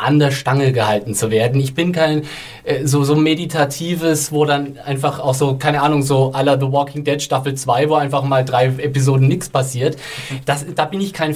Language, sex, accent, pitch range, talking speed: German, male, German, 135-165 Hz, 205 wpm